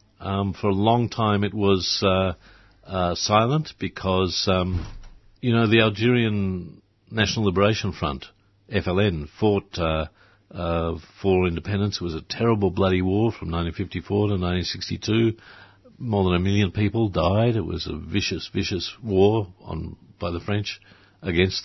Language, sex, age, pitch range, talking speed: English, male, 50-69, 90-105 Hz, 145 wpm